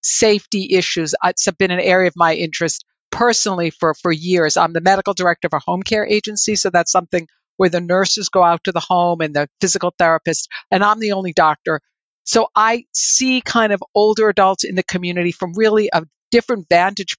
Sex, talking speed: female, 200 wpm